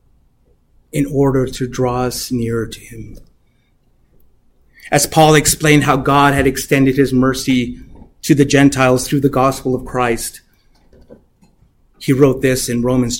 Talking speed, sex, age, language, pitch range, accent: 135 wpm, male, 30-49, English, 125-160 Hz, American